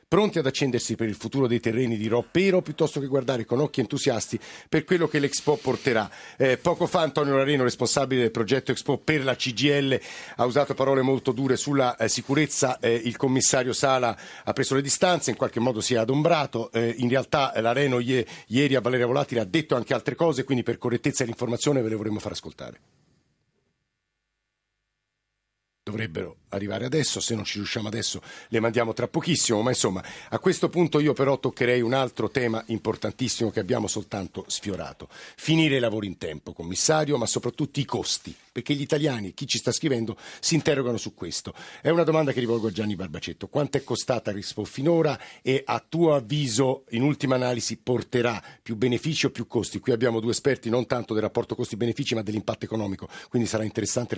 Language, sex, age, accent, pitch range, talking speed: Italian, male, 50-69, native, 110-140 Hz, 185 wpm